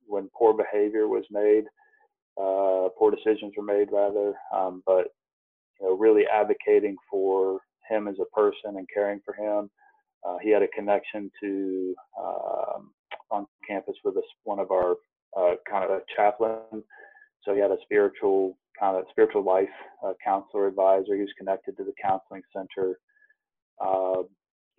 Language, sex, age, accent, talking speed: English, male, 30-49, American, 155 wpm